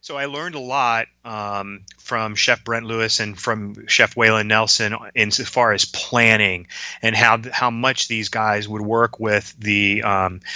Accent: American